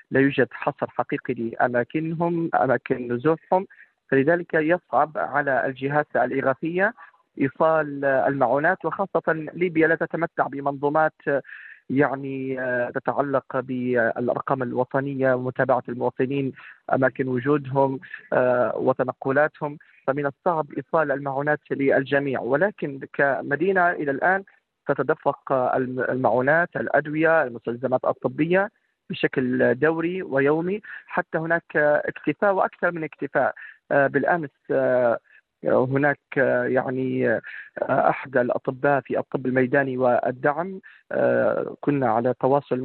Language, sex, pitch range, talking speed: Arabic, male, 130-160 Hz, 90 wpm